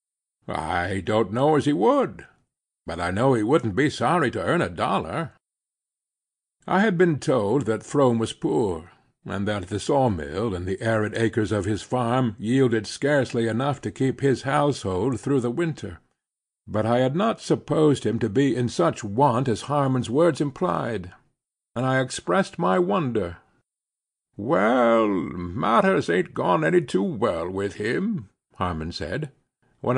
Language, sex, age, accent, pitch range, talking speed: English, male, 60-79, American, 105-150 Hz, 155 wpm